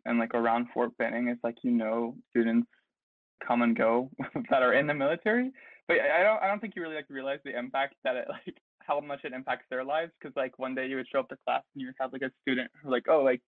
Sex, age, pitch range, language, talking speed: male, 20-39, 120-150 Hz, English, 265 wpm